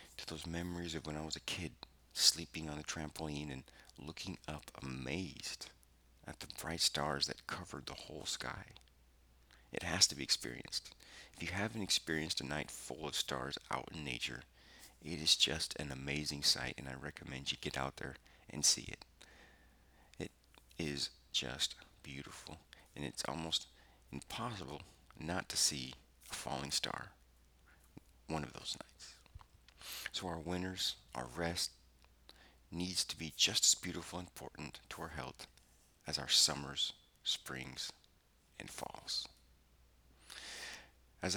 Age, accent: 40-59, American